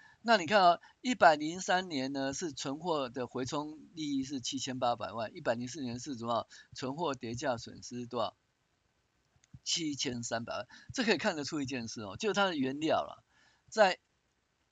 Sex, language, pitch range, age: male, Chinese, 115-160 Hz, 50-69